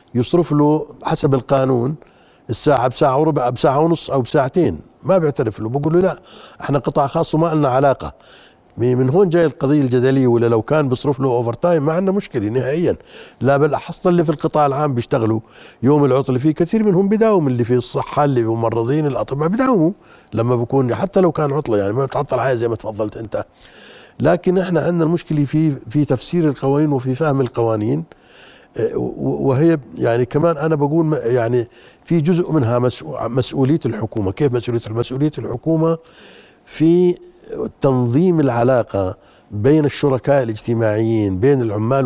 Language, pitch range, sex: Arabic, 120-155 Hz, male